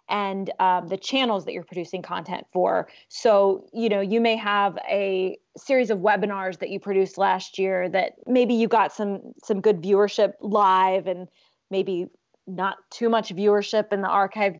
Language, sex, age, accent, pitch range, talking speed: English, female, 20-39, American, 190-215 Hz, 175 wpm